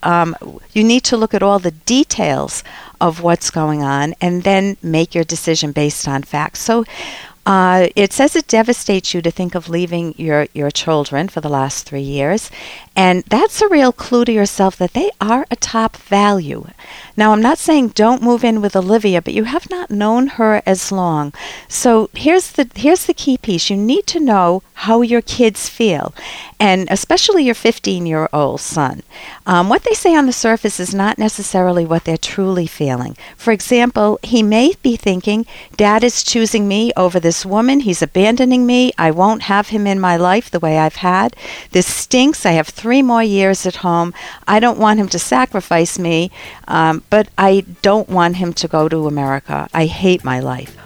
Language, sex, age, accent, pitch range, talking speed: English, female, 50-69, American, 170-230 Hz, 190 wpm